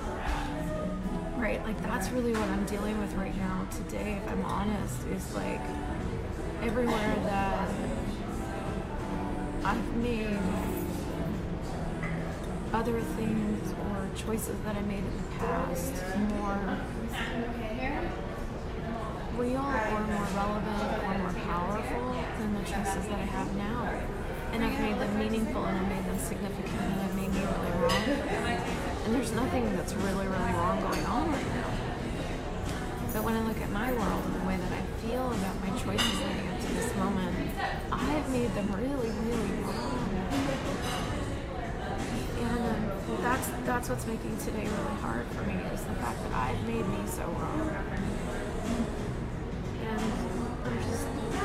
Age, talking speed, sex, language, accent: 20-39, 140 wpm, female, English, American